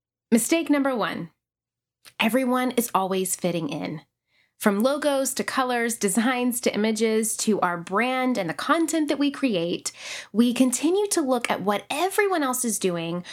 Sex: female